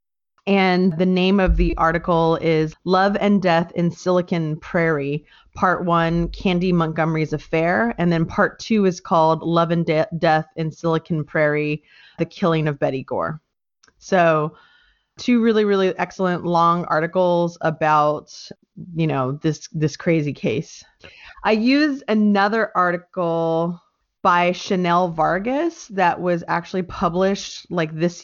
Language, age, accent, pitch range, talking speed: English, 30-49, American, 160-185 Hz, 130 wpm